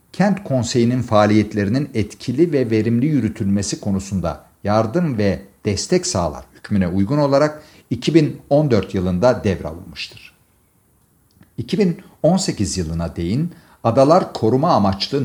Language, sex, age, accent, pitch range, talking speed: Turkish, male, 50-69, native, 95-135 Hz, 95 wpm